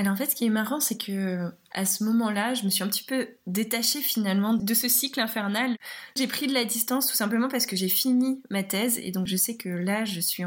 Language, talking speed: French, 250 wpm